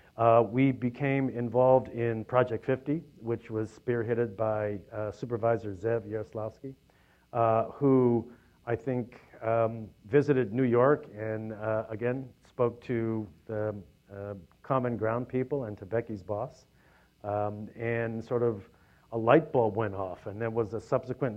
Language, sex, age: English, male, 50-69